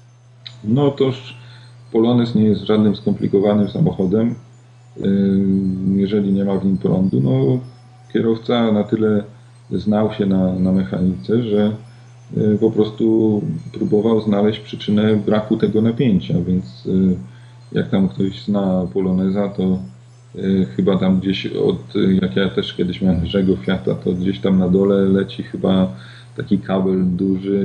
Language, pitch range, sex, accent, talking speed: Polish, 95-120 Hz, male, native, 130 wpm